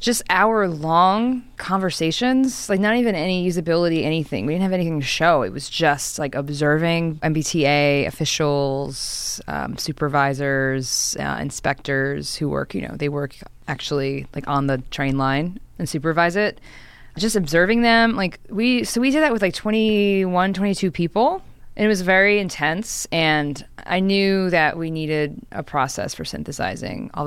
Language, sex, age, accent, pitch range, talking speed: English, female, 20-39, American, 155-205 Hz, 155 wpm